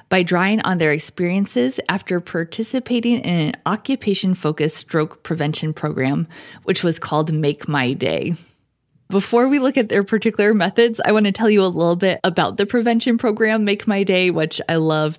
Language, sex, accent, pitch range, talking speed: English, female, American, 165-220 Hz, 175 wpm